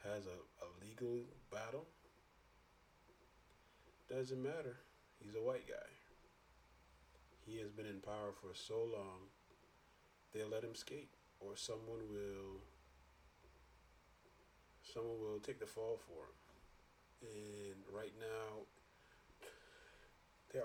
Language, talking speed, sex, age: English, 110 wpm, male, 30-49